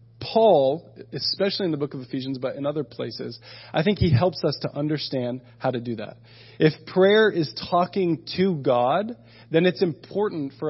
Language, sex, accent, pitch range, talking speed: English, male, American, 120-155 Hz, 180 wpm